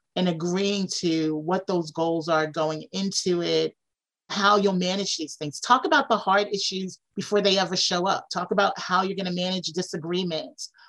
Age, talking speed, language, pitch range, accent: 30-49, 180 wpm, English, 175-205 Hz, American